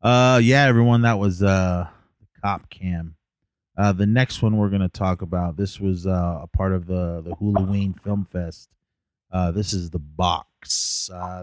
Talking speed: 185 wpm